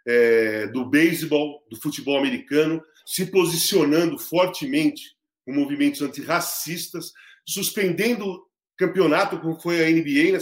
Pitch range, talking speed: 160-250 Hz, 110 wpm